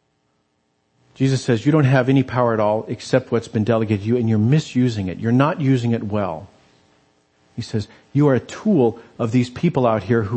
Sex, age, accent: male, 50-69, American